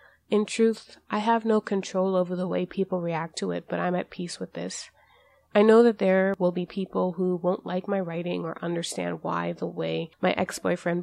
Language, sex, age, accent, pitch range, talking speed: English, female, 20-39, American, 170-210 Hz, 205 wpm